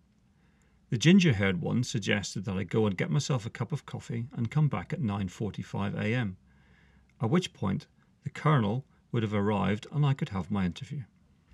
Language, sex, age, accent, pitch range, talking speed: English, male, 40-59, British, 100-145 Hz, 170 wpm